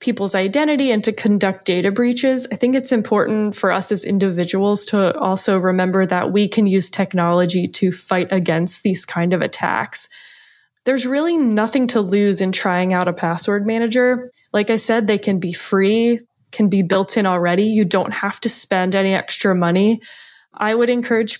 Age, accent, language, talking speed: 10-29, American, English, 180 wpm